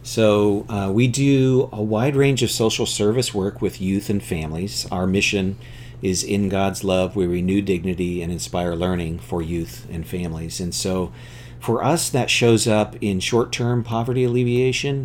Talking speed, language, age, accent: 170 wpm, English, 40-59, American